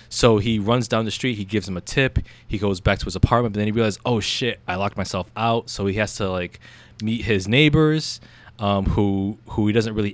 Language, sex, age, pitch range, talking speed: English, male, 20-39, 95-115 Hz, 245 wpm